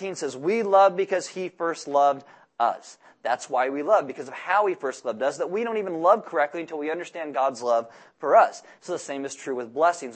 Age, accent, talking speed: 30-49, American, 230 wpm